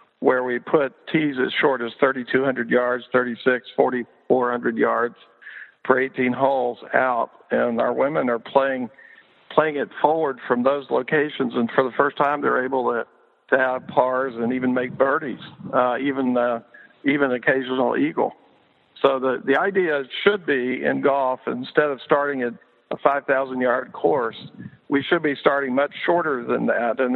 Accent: American